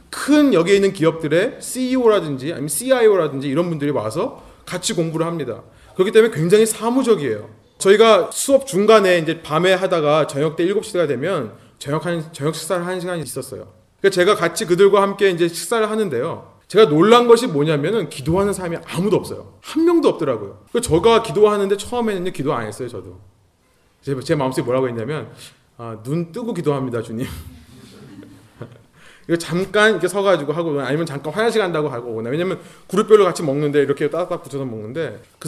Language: Korean